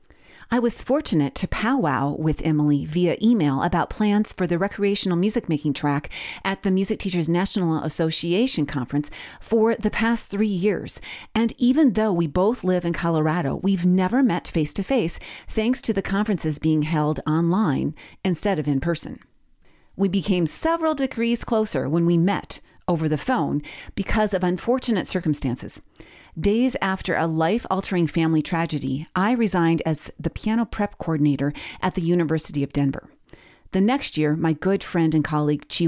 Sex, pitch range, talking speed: female, 155-205 Hz, 155 wpm